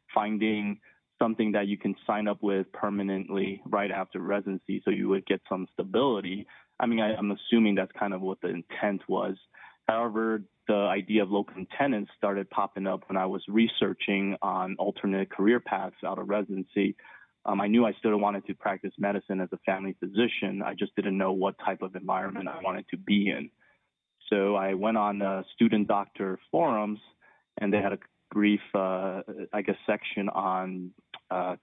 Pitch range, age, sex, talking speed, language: 95-105 Hz, 20-39, male, 175 wpm, English